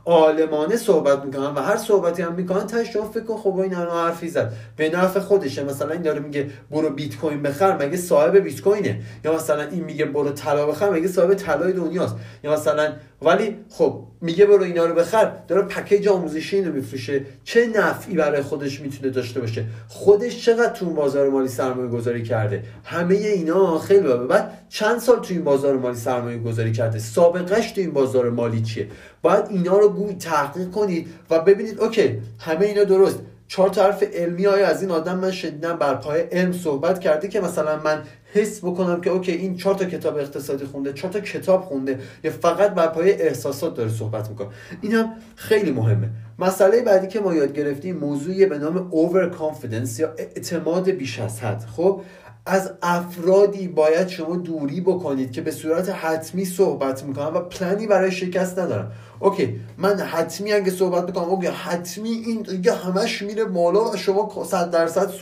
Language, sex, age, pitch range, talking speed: Persian, male, 30-49, 140-195 Hz, 165 wpm